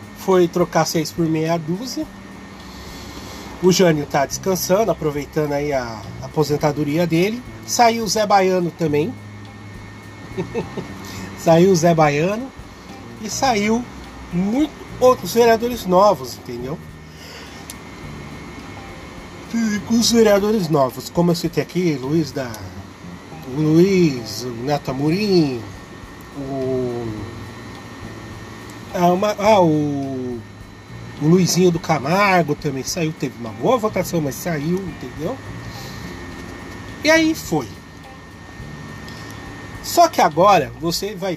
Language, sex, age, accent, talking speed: Portuguese, male, 30-49, Brazilian, 100 wpm